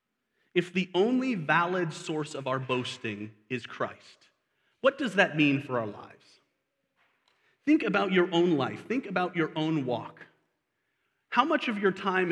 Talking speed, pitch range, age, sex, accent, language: 155 wpm, 135-195 Hz, 30-49, male, American, English